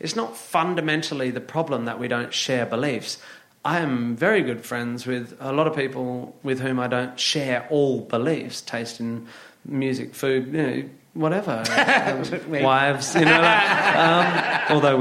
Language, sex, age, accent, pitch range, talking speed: English, male, 30-49, British, 115-155 Hz, 160 wpm